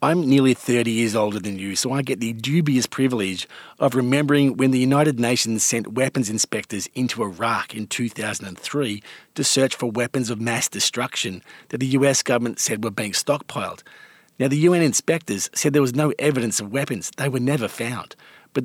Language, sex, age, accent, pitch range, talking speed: English, male, 40-59, Australian, 110-140 Hz, 185 wpm